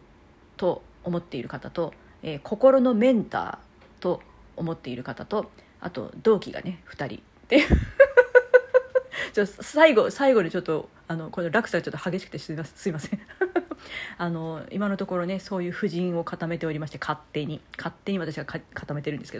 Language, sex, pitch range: Japanese, female, 160-210 Hz